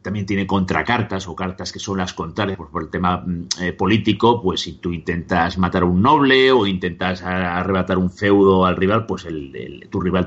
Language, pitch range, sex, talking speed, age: Spanish, 90-115 Hz, male, 210 wpm, 30-49